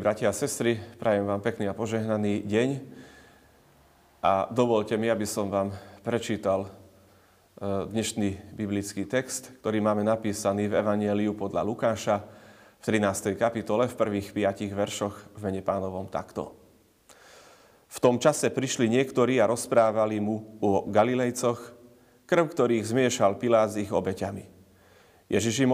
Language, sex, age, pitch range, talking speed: Slovak, male, 30-49, 100-120 Hz, 130 wpm